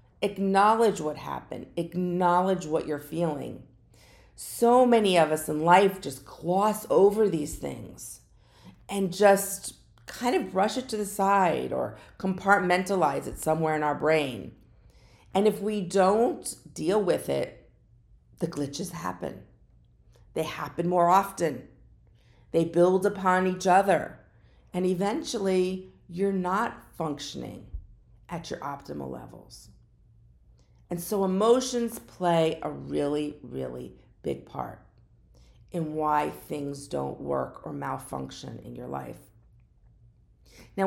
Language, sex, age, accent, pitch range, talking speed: English, female, 40-59, American, 140-190 Hz, 120 wpm